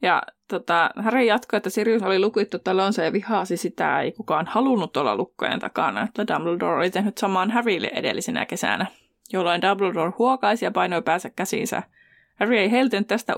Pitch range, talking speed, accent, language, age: 185-230 Hz, 165 wpm, native, Finnish, 20-39